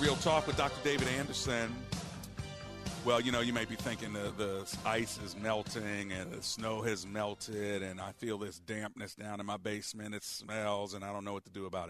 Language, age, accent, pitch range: English, 40-59, American, 95-110 Hz